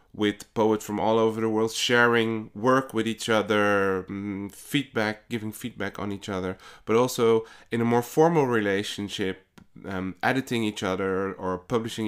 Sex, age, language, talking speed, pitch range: male, 20-39, English, 155 wpm, 95-115 Hz